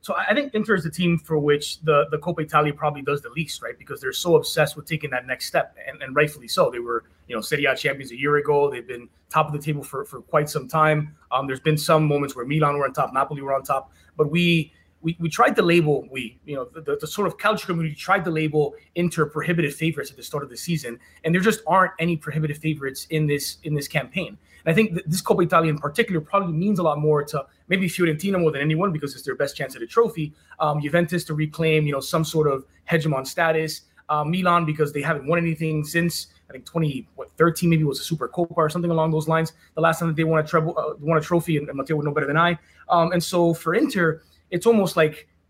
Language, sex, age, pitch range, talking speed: English, male, 30-49, 150-175 Hz, 255 wpm